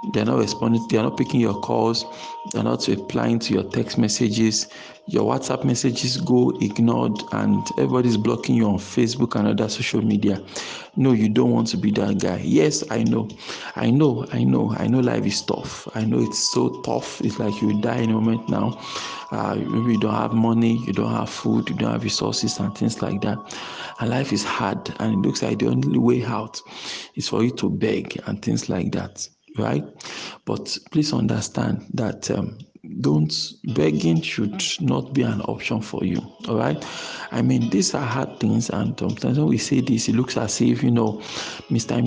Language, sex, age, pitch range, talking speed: English, male, 50-69, 100-125 Hz, 200 wpm